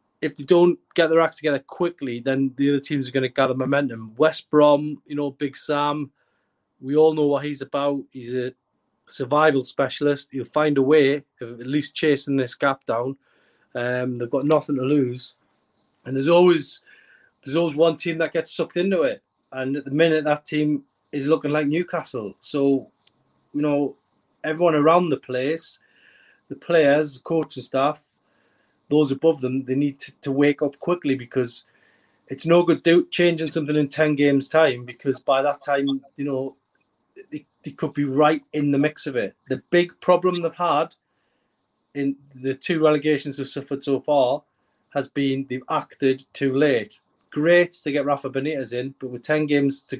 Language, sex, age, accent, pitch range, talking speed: English, male, 30-49, British, 135-160 Hz, 180 wpm